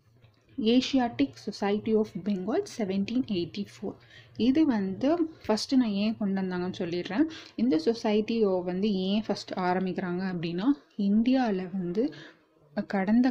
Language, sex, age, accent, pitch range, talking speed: Tamil, female, 30-49, native, 190-240 Hz, 105 wpm